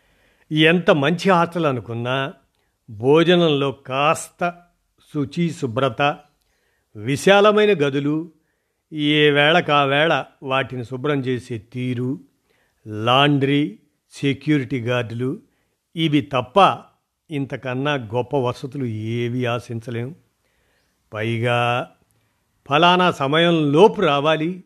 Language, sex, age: Telugu, male, 50-69